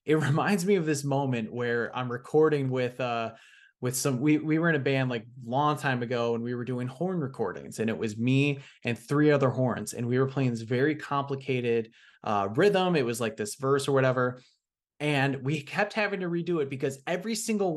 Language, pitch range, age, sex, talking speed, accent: English, 125-160 Hz, 20-39, male, 215 wpm, American